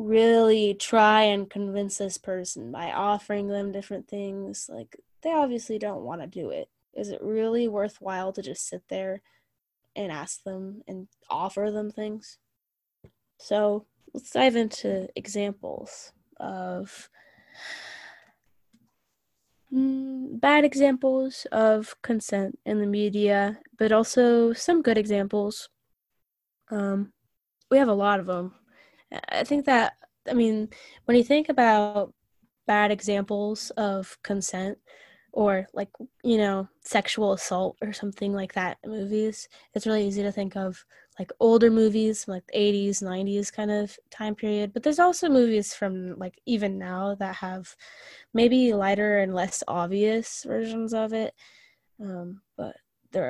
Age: 10-29